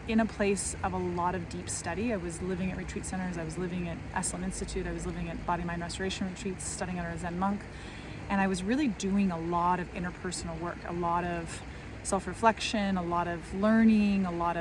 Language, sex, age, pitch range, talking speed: English, female, 30-49, 175-210 Hz, 220 wpm